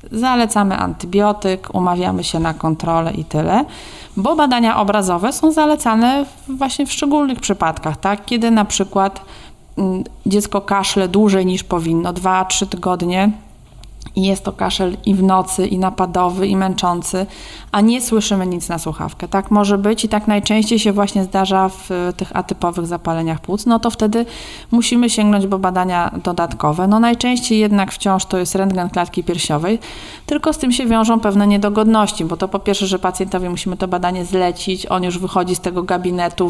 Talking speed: 165 wpm